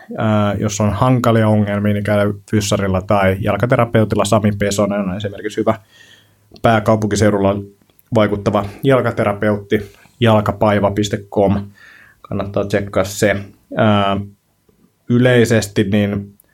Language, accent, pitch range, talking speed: Finnish, native, 100-110 Hz, 80 wpm